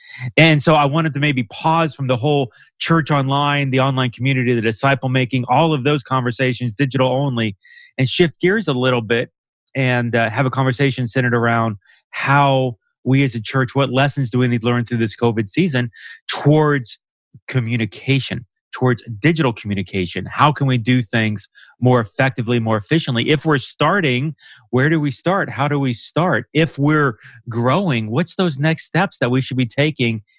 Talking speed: 180 wpm